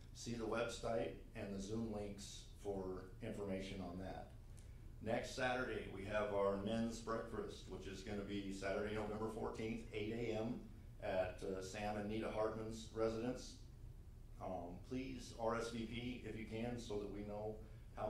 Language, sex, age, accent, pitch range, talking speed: English, male, 40-59, American, 100-110 Hz, 150 wpm